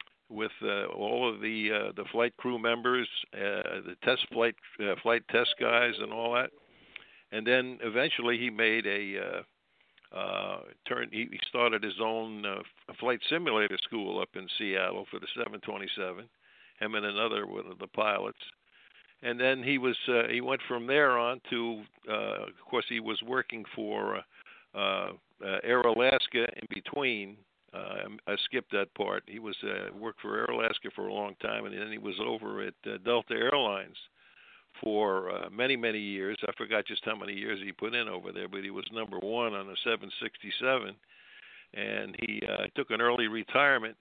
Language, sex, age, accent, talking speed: English, male, 60-79, American, 180 wpm